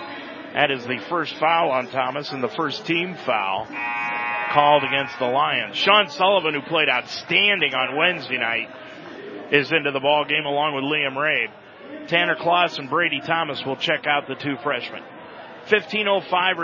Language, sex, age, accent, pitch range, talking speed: English, male, 40-59, American, 125-155 Hz, 160 wpm